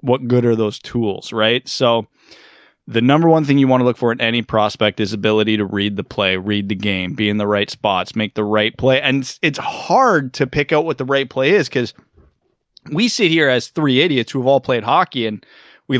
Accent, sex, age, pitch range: American, male, 20-39, 110-150 Hz